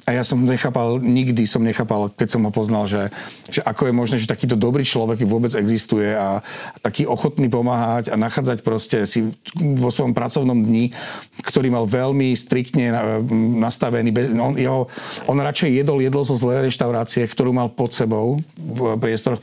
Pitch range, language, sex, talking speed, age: 105-125 Hz, Slovak, male, 175 wpm, 40-59